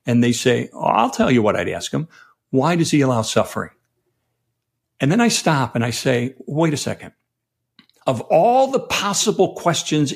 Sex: male